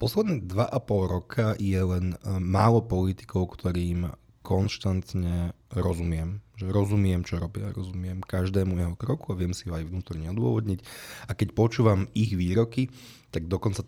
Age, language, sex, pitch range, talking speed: 20-39, Slovak, male, 90-115 Hz, 140 wpm